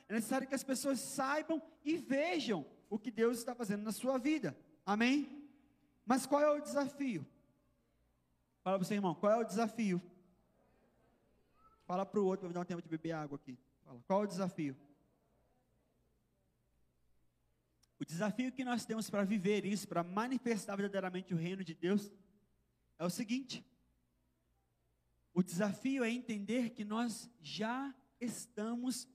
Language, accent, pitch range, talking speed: Portuguese, Brazilian, 185-260 Hz, 150 wpm